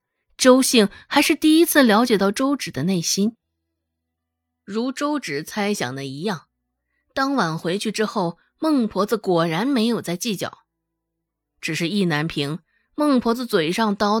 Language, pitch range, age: Chinese, 160-260 Hz, 20-39